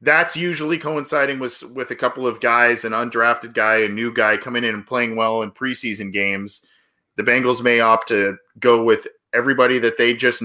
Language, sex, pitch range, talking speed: English, male, 105-130 Hz, 195 wpm